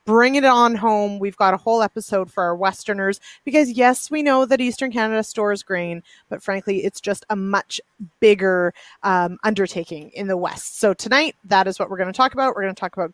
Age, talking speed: 30-49, 210 wpm